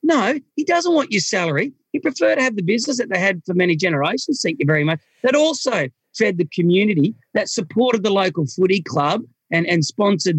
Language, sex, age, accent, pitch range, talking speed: English, male, 40-59, Australian, 155-230 Hz, 210 wpm